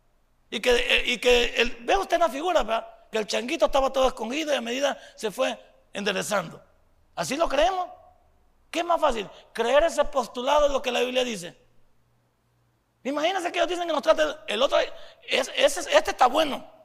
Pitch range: 210-300 Hz